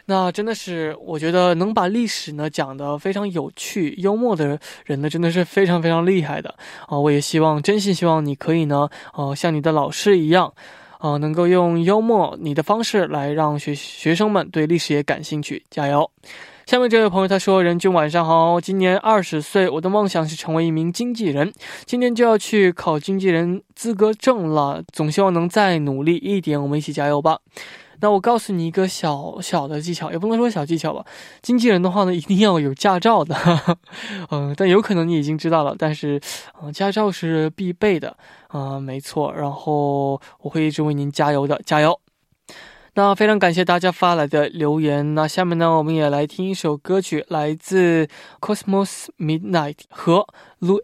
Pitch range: 150-195 Hz